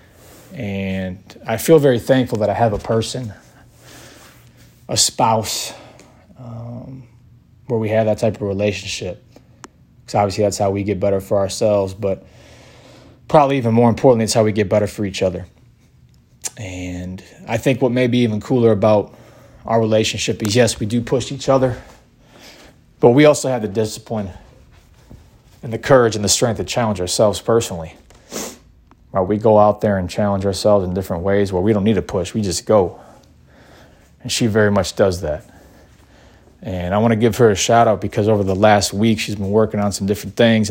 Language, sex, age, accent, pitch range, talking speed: English, male, 20-39, American, 95-120 Hz, 180 wpm